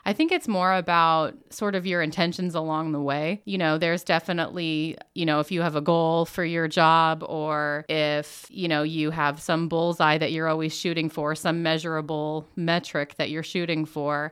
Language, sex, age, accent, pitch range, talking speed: English, female, 30-49, American, 155-180 Hz, 195 wpm